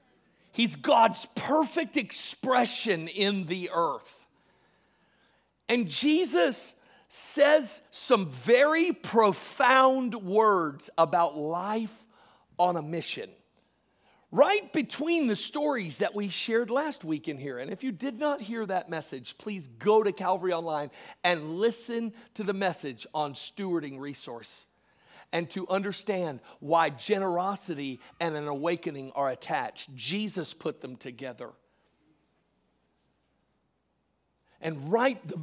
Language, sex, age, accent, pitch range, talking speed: English, male, 50-69, American, 160-230 Hz, 115 wpm